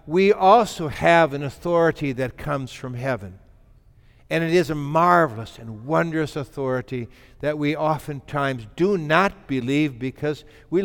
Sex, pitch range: male, 135-195 Hz